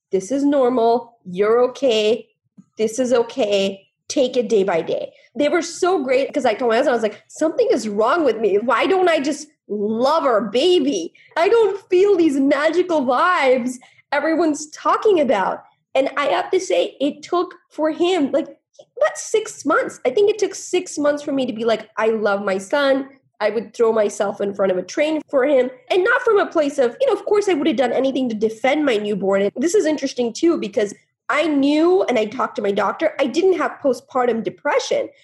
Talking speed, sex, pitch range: 210 wpm, female, 240-340 Hz